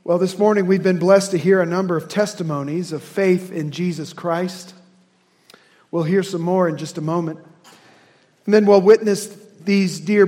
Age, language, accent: 40-59, English, American